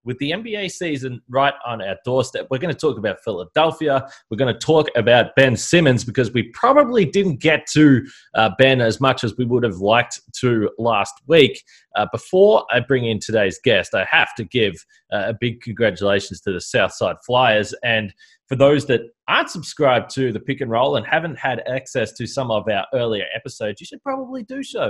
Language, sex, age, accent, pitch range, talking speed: English, male, 20-39, Australian, 110-145 Hz, 200 wpm